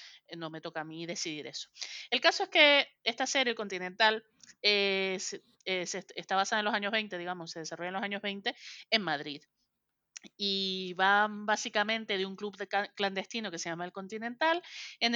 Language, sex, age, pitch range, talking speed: Spanish, female, 30-49, 175-220 Hz, 180 wpm